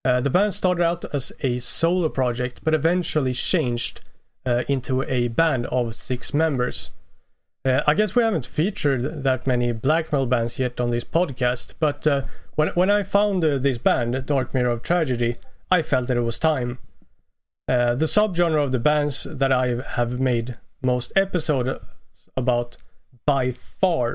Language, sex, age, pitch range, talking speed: English, male, 30-49, 120-155 Hz, 170 wpm